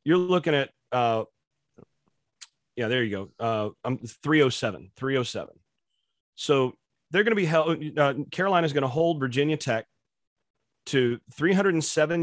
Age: 40-59